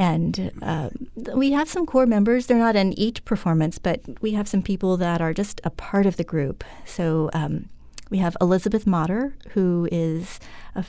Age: 30-49